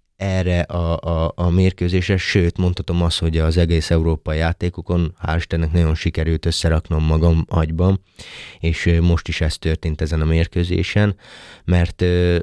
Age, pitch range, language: 30-49, 80-90 Hz, Hungarian